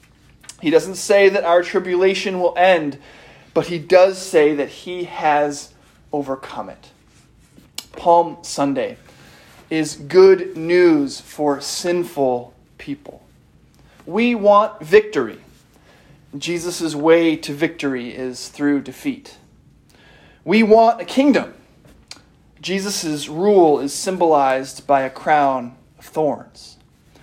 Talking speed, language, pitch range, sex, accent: 105 wpm, English, 150-200 Hz, male, American